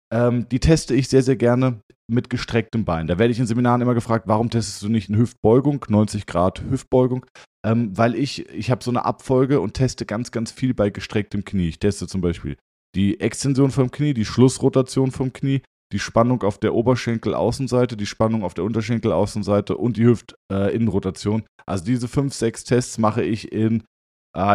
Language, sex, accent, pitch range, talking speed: German, male, German, 100-130 Hz, 185 wpm